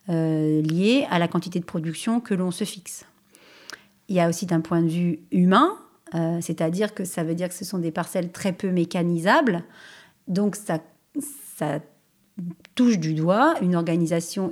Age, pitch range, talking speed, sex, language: 40-59, 170-210 Hz, 175 wpm, female, French